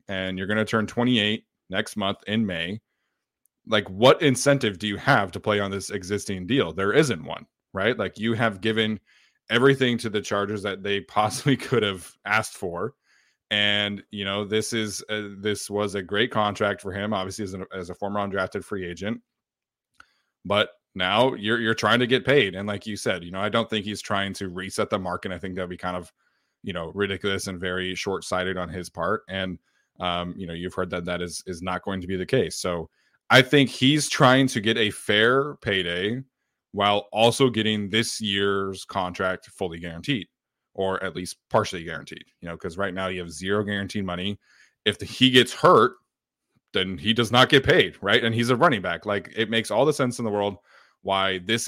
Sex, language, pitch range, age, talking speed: male, English, 95-110 Hz, 20-39, 205 wpm